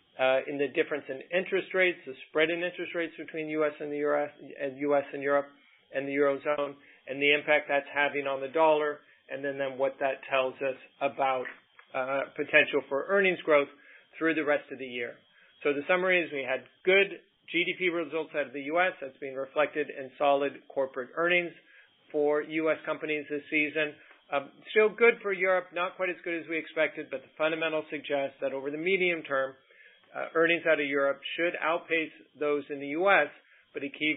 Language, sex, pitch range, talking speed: English, male, 140-160 Hz, 205 wpm